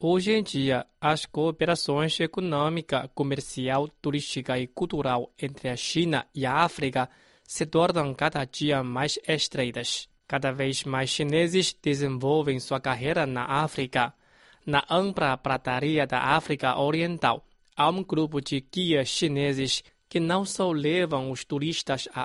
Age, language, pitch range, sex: 20-39, Chinese, 135-165 Hz, male